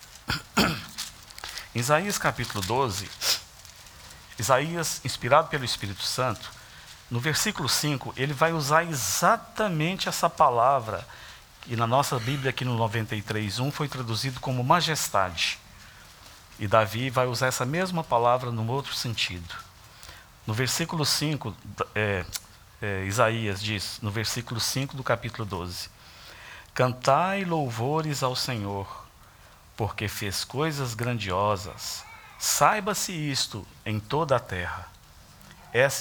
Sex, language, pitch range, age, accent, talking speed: male, Portuguese, 105-150 Hz, 50-69, Brazilian, 110 wpm